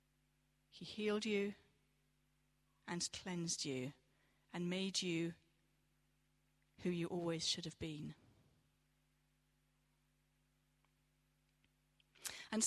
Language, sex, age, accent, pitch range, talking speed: English, female, 40-59, British, 160-210 Hz, 75 wpm